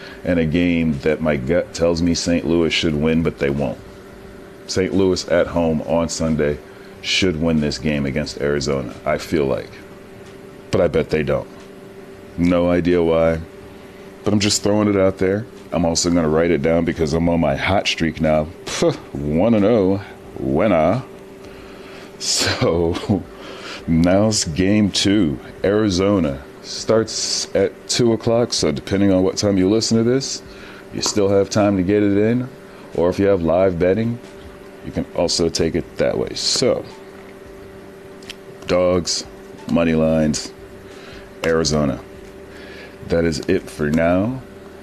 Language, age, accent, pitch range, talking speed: English, 40-59, American, 80-95 Hz, 150 wpm